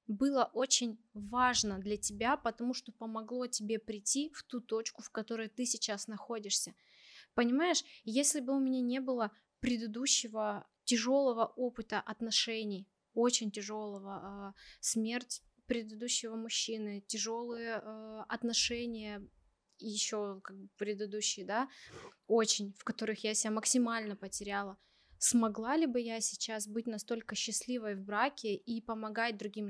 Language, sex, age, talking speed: Russian, female, 20-39, 125 wpm